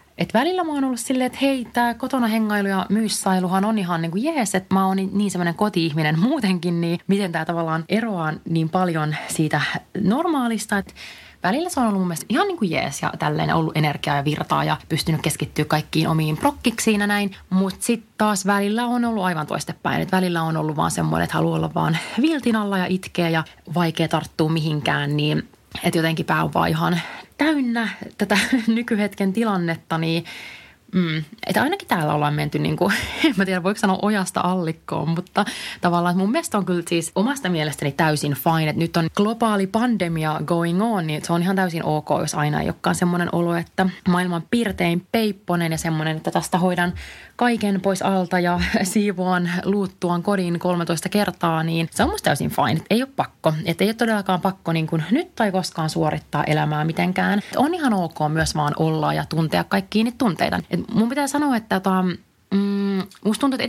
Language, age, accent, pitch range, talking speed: Finnish, 30-49, native, 165-215 Hz, 185 wpm